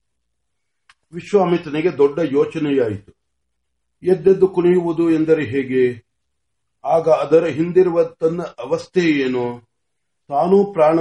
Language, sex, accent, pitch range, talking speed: Marathi, male, native, 130-170 Hz, 55 wpm